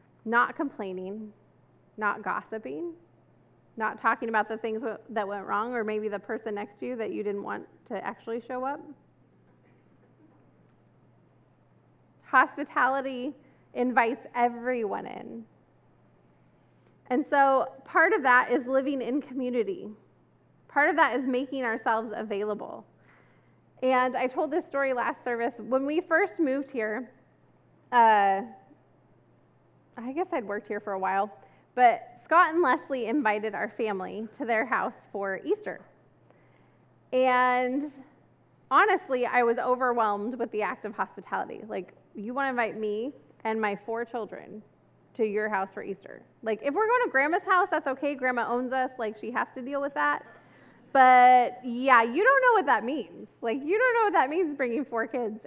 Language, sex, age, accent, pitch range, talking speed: English, female, 20-39, American, 220-280 Hz, 155 wpm